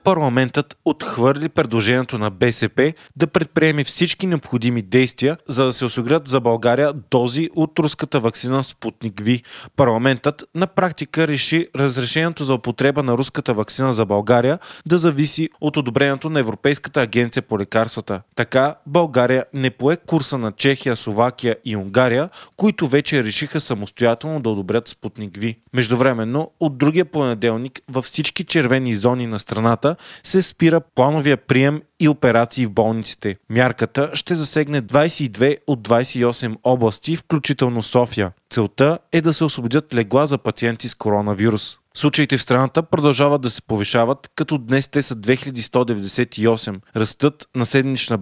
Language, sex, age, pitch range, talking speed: Bulgarian, male, 20-39, 115-150 Hz, 140 wpm